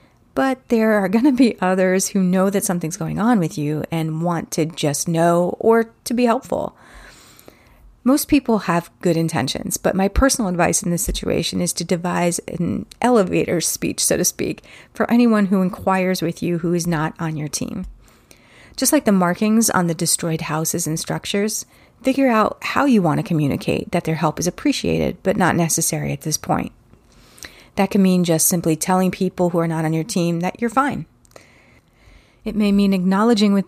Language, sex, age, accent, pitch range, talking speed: English, female, 30-49, American, 170-215 Hz, 190 wpm